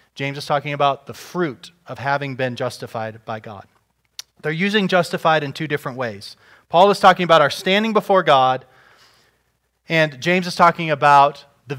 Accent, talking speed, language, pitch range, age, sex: American, 170 wpm, English, 115-160 Hz, 30-49, male